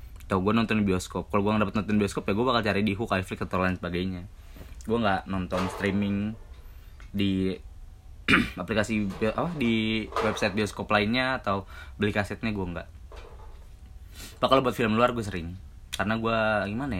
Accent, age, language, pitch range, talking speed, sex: native, 20-39, Indonesian, 90-110 Hz, 155 wpm, male